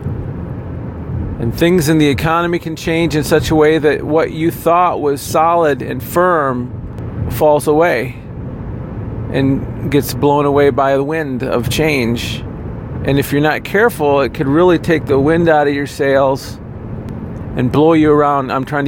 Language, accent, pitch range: English, American, 120-150 Hz